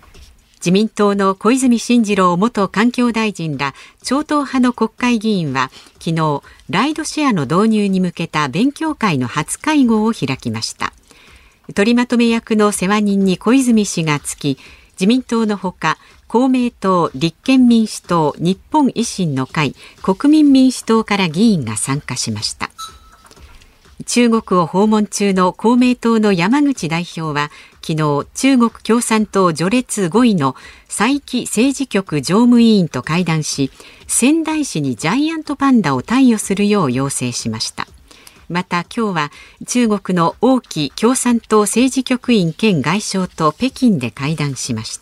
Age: 50-69